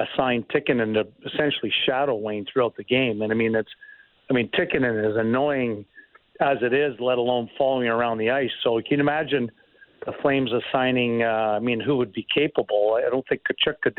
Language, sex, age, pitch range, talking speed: English, male, 50-69, 115-140 Hz, 205 wpm